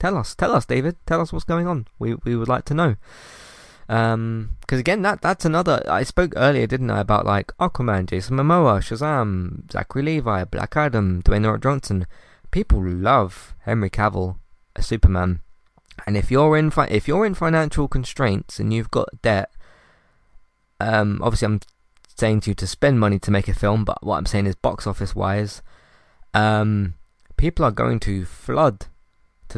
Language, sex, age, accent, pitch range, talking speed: English, male, 20-39, British, 95-130 Hz, 180 wpm